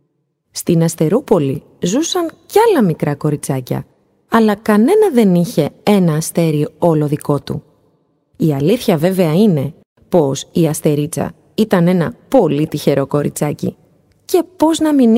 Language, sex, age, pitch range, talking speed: Greek, female, 30-49, 155-225 Hz, 125 wpm